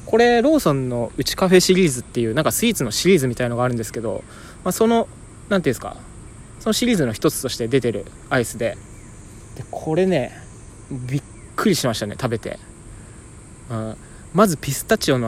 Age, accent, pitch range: 20-39, native, 115-185 Hz